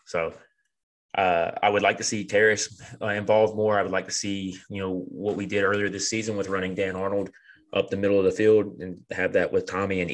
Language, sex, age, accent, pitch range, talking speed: English, male, 20-39, American, 95-115 Hz, 235 wpm